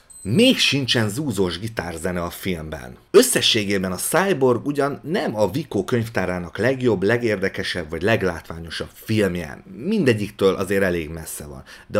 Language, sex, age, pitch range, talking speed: Hungarian, male, 30-49, 95-135 Hz, 125 wpm